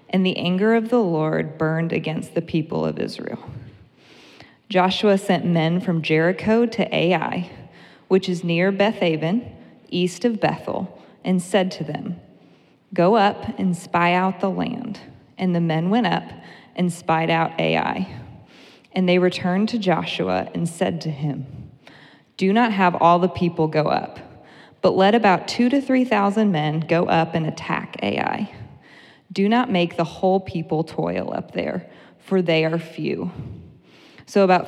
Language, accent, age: English, American, 20-39